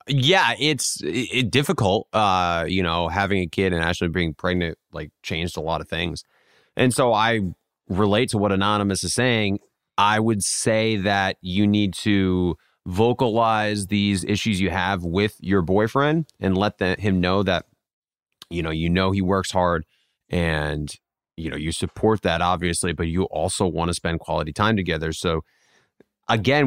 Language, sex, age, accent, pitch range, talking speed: English, male, 30-49, American, 90-110 Hz, 170 wpm